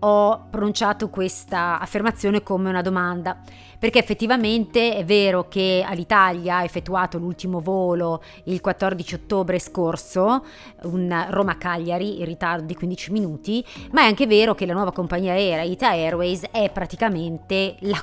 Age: 30-49